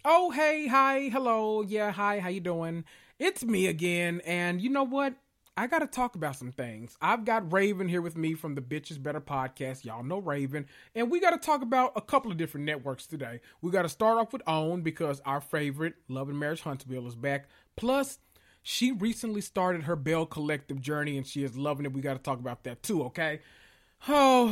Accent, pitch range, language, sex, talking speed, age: American, 140-190 Hz, English, male, 205 wpm, 30-49